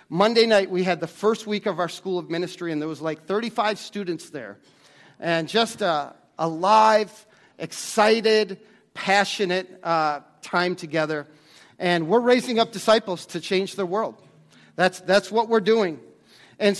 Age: 40-59